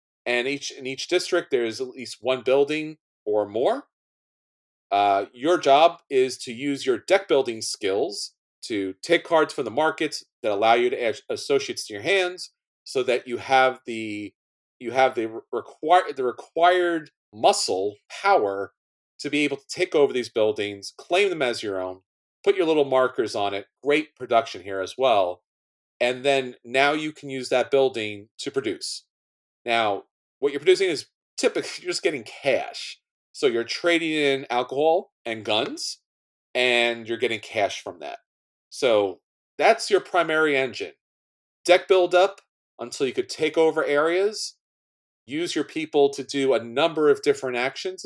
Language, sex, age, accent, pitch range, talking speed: English, male, 40-59, American, 115-180 Hz, 165 wpm